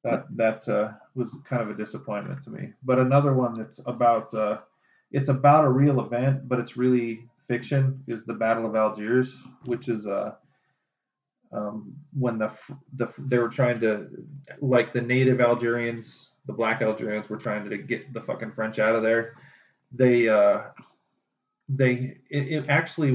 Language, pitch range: English, 110-130 Hz